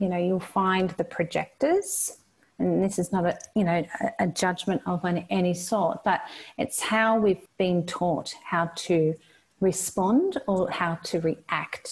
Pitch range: 175-225 Hz